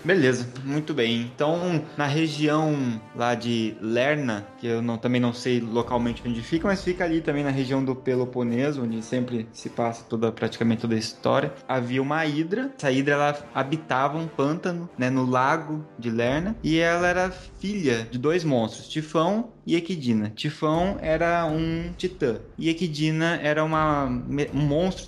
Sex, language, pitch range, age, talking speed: male, Portuguese, 130-170 Hz, 20-39, 160 wpm